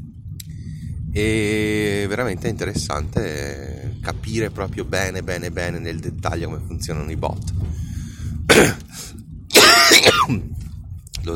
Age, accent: 30-49, native